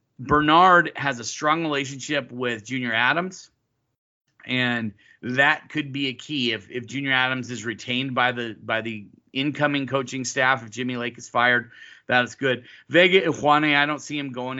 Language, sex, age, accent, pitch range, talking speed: English, male, 30-49, American, 125-145 Hz, 170 wpm